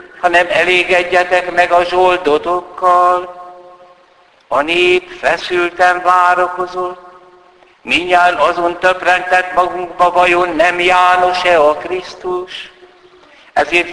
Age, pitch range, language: 60-79, 175-180 Hz, Hungarian